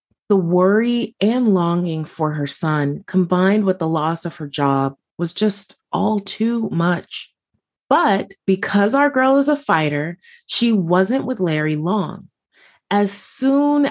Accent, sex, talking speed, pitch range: American, female, 140 wpm, 160-215 Hz